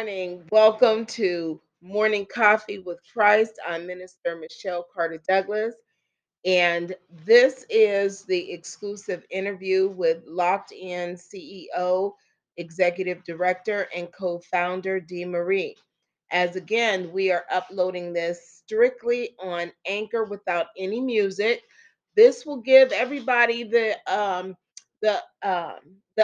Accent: American